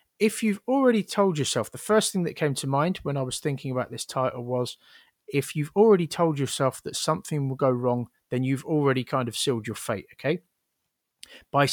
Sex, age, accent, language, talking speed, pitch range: male, 30-49, British, English, 205 wpm, 125-150 Hz